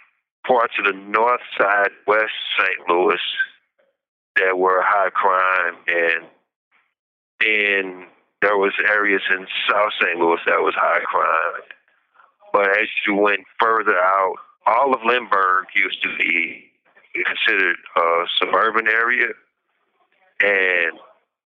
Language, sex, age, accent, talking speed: English, male, 50-69, American, 115 wpm